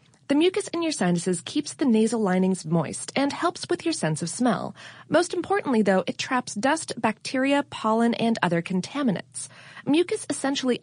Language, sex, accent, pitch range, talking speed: English, female, American, 185-280 Hz, 165 wpm